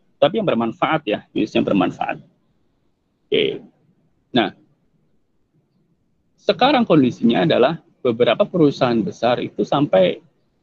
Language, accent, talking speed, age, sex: Indonesian, native, 95 wpm, 30-49, male